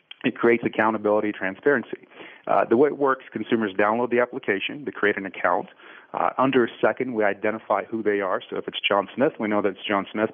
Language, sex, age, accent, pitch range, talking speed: English, male, 40-59, American, 105-125 Hz, 215 wpm